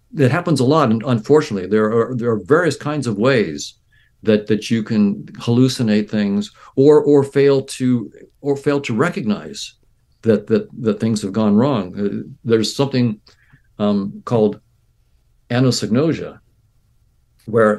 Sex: male